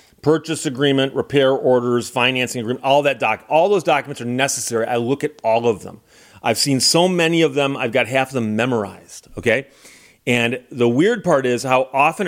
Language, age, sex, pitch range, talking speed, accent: English, 40-59, male, 120-155 Hz, 195 wpm, American